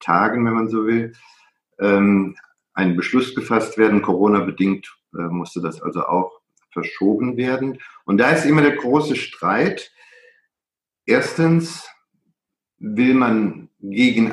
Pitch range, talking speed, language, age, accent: 100-125 Hz, 115 wpm, German, 50-69, German